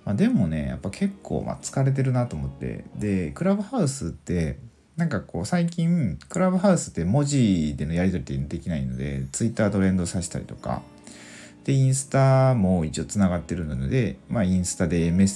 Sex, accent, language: male, native, Japanese